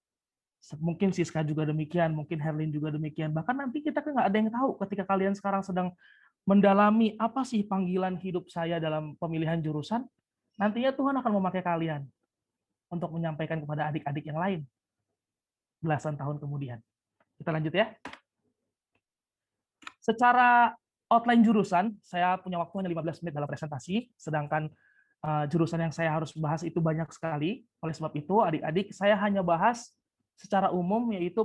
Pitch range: 160-200 Hz